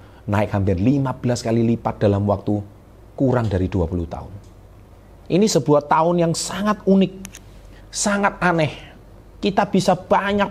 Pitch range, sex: 100-125 Hz, male